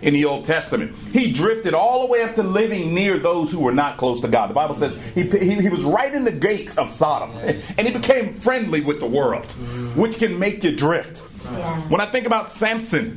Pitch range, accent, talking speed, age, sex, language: 165-235 Hz, American, 230 wpm, 40-59, male, English